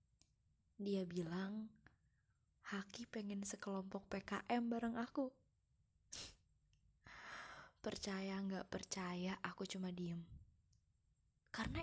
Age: 20-39